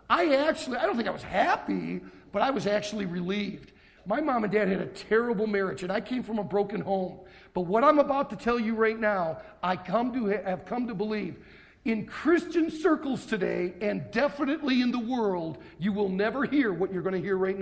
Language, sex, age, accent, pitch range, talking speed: English, male, 50-69, American, 205-295 Hz, 215 wpm